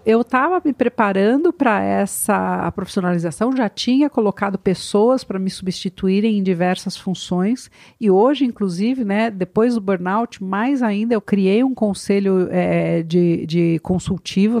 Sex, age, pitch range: female, 50-69, 175-230 Hz